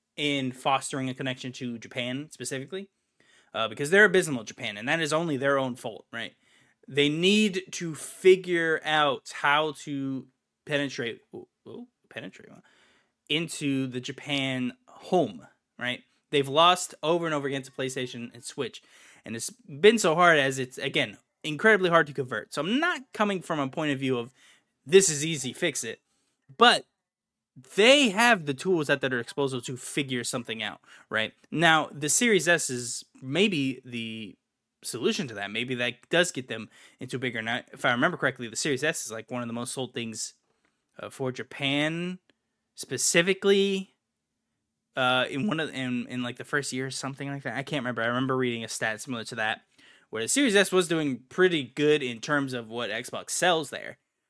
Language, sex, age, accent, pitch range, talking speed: English, male, 20-39, American, 125-165 Hz, 185 wpm